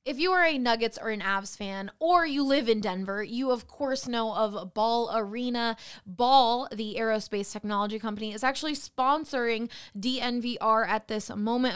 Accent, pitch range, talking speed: American, 220-255 Hz, 170 wpm